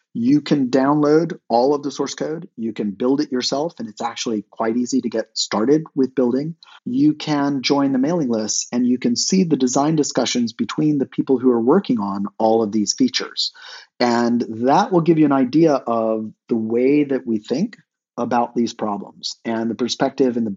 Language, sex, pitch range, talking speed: English, male, 115-155 Hz, 200 wpm